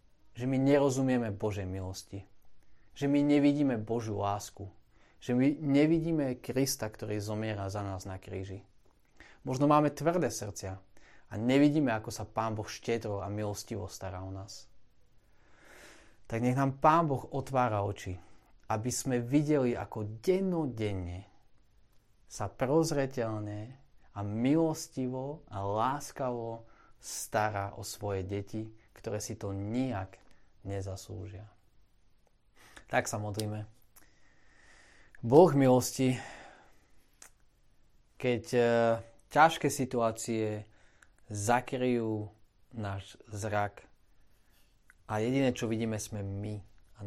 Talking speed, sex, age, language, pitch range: 105 wpm, male, 30-49, Slovak, 100-125 Hz